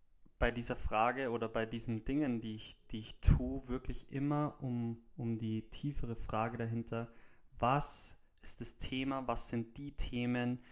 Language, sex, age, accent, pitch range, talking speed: German, male, 20-39, German, 115-135 Hz, 155 wpm